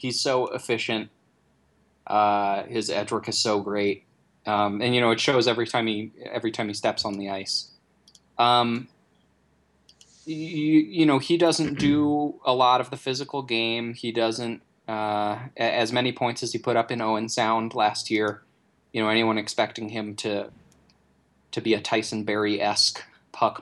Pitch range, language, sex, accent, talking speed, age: 105-120 Hz, English, male, American, 175 wpm, 20-39